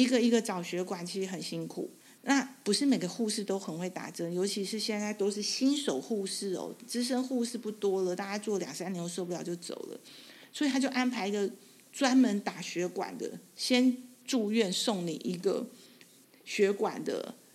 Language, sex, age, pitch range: Chinese, female, 50-69, 190-255 Hz